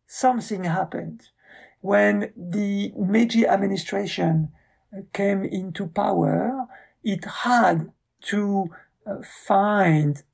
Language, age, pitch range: English, 50-69, 155-205 Hz